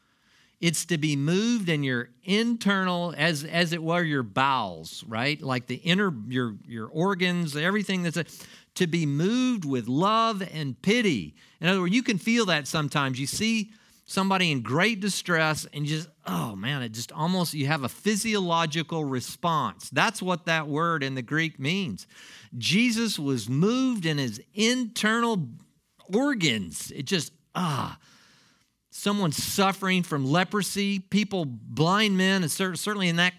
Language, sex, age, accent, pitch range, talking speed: English, male, 50-69, American, 145-195 Hz, 155 wpm